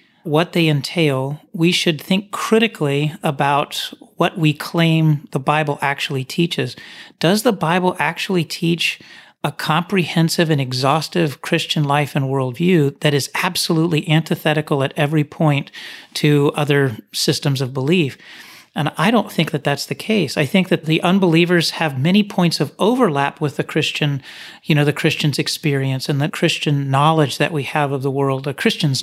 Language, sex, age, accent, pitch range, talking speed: English, male, 40-59, American, 145-175 Hz, 160 wpm